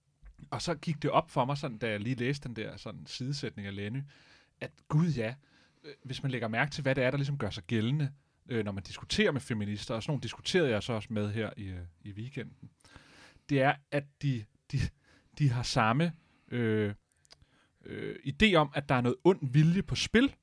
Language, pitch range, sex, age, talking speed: Danish, 120-155 Hz, male, 30-49, 215 wpm